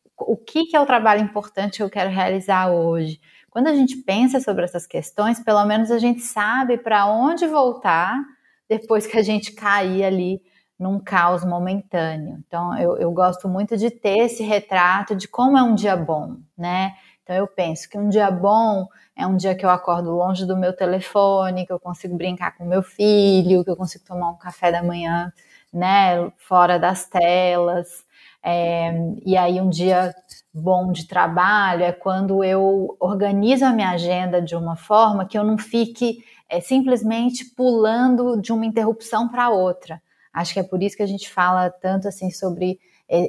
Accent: Brazilian